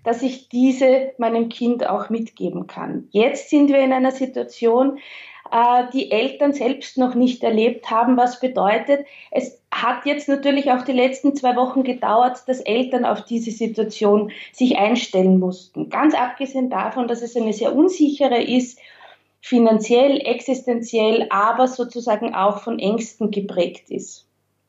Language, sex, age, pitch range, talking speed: German, female, 20-39, 210-260 Hz, 145 wpm